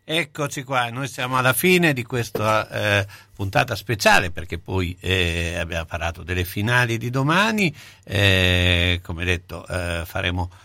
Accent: native